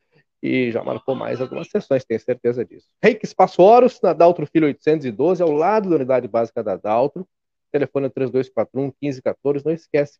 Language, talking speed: Portuguese, 175 wpm